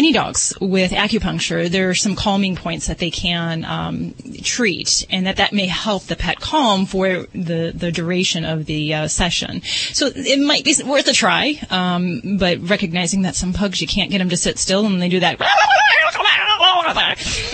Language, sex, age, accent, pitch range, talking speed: English, female, 30-49, American, 180-240 Hz, 190 wpm